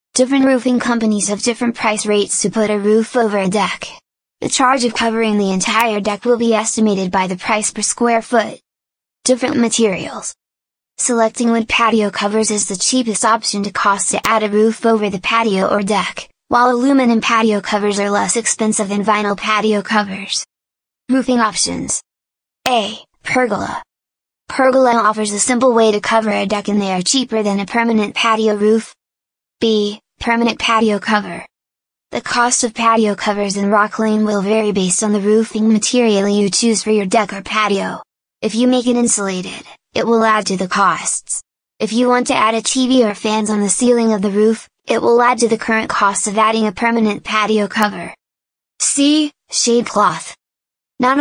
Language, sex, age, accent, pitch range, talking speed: English, female, 10-29, American, 205-235 Hz, 180 wpm